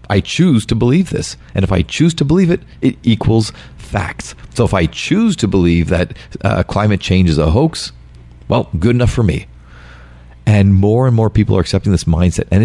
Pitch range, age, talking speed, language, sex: 80-100 Hz, 40-59, 205 wpm, English, male